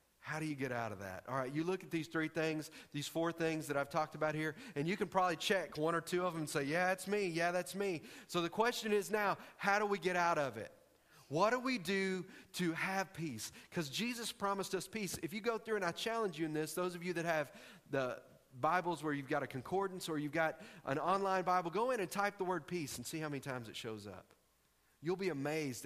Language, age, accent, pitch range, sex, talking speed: English, 40-59, American, 145-195 Hz, male, 260 wpm